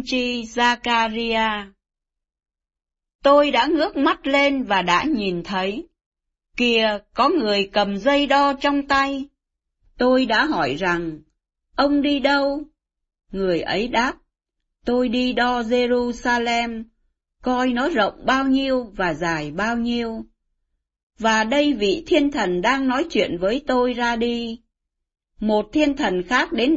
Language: Vietnamese